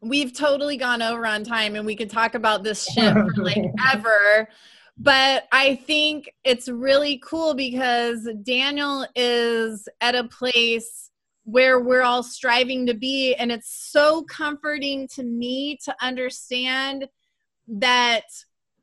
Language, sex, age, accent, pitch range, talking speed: English, female, 20-39, American, 230-270 Hz, 135 wpm